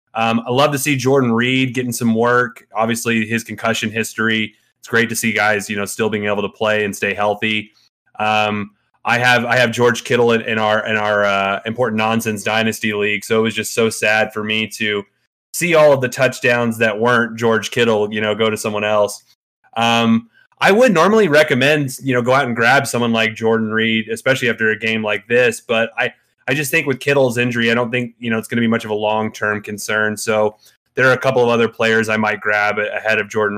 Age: 20-39